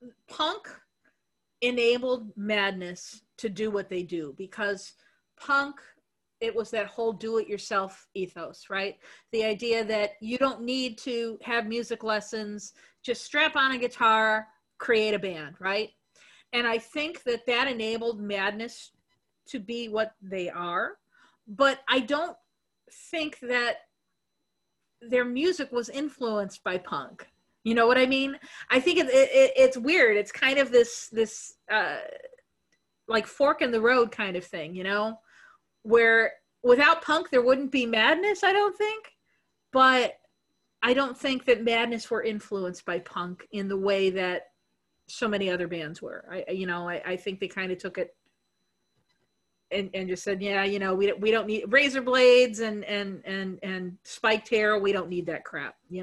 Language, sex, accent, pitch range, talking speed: English, female, American, 195-255 Hz, 165 wpm